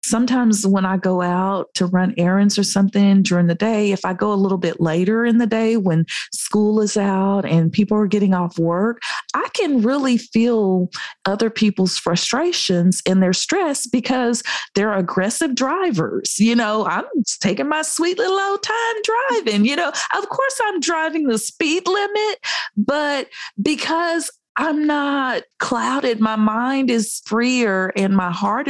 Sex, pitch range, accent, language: female, 190-260 Hz, American, English